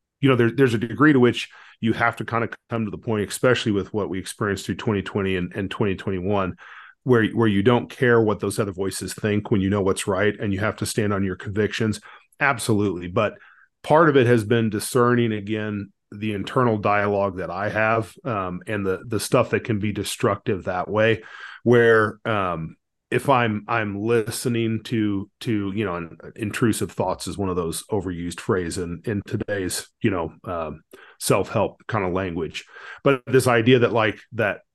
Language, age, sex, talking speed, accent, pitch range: English, 40-59, male, 190 wpm, American, 100-115 Hz